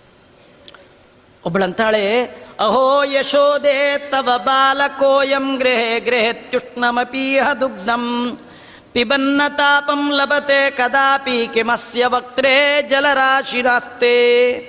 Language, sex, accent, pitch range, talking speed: Kannada, female, native, 245-290 Hz, 55 wpm